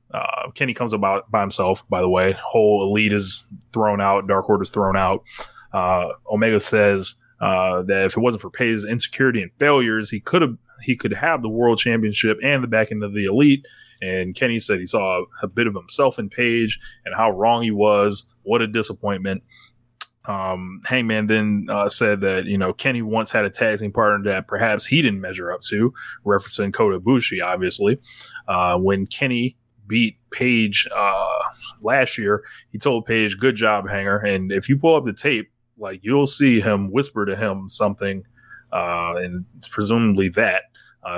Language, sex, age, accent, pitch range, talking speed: English, male, 20-39, American, 95-120 Hz, 190 wpm